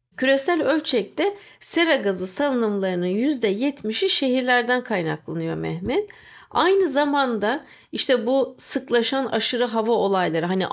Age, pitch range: 60-79, 190-275 Hz